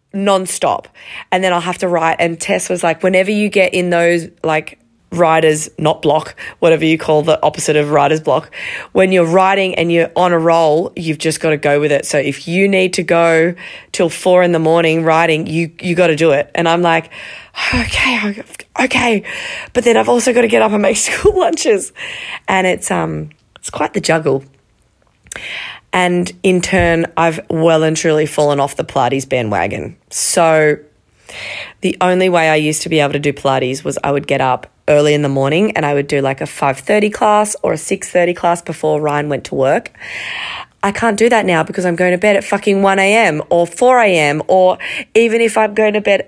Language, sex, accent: English, female, Australian